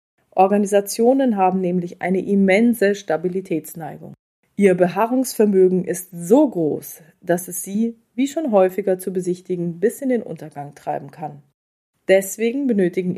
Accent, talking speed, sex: German, 125 wpm, female